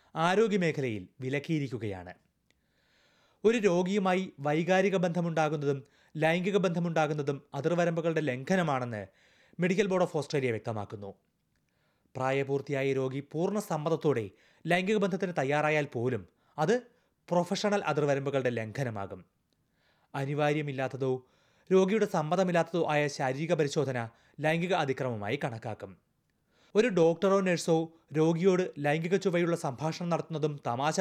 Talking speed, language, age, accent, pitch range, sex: 90 wpm, Malayalam, 30-49, native, 140-180 Hz, male